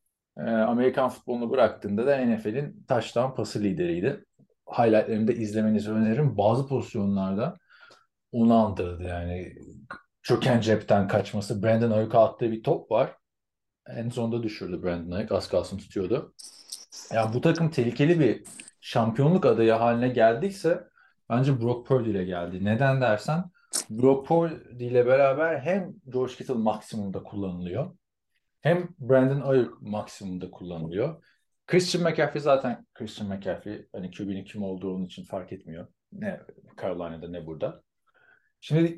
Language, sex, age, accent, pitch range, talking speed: Turkish, male, 40-59, native, 105-155 Hz, 125 wpm